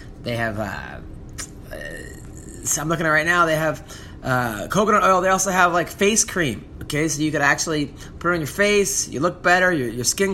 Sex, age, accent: male, 20-39, American